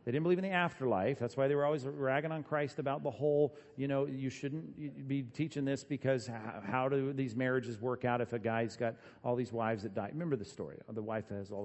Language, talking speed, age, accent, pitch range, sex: English, 240 wpm, 40-59, American, 125-170 Hz, male